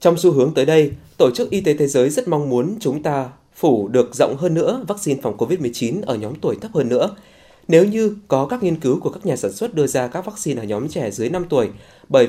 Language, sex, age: Vietnamese, male, 20-39